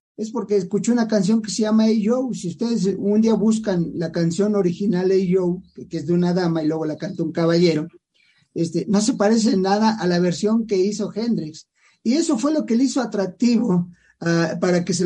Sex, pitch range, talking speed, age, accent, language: male, 175-225 Hz, 225 wpm, 50-69, Mexican, English